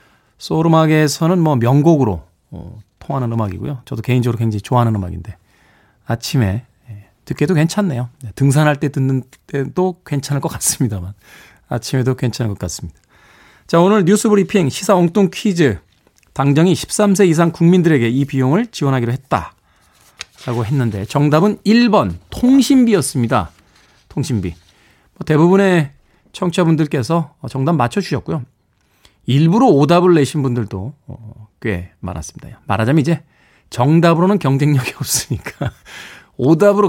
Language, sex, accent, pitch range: Korean, male, native, 115-175 Hz